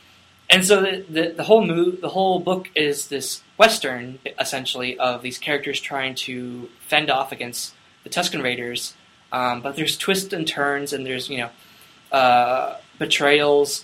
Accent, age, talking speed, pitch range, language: American, 20-39, 160 wpm, 125-155 Hz, English